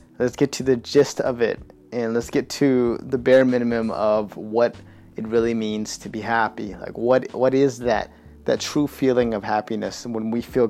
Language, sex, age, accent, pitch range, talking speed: English, male, 20-39, American, 105-125 Hz, 195 wpm